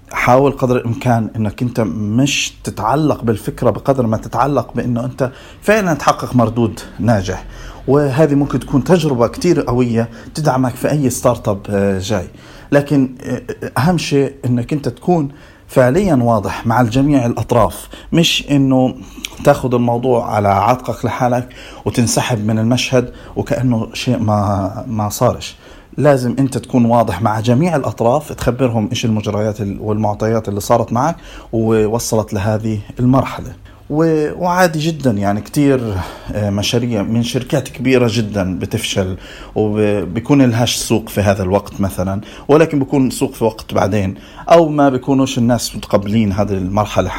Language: Arabic